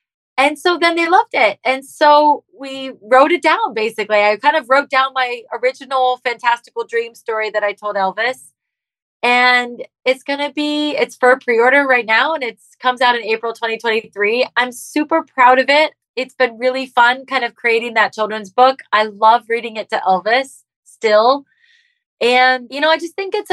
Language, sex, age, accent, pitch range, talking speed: English, female, 20-39, American, 205-265 Hz, 190 wpm